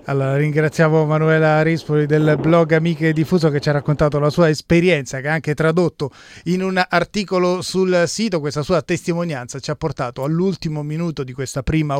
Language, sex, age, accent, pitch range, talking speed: Italian, male, 30-49, native, 140-180 Hz, 175 wpm